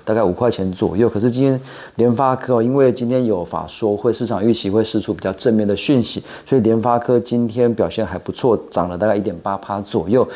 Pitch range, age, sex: 100-130 Hz, 40-59, male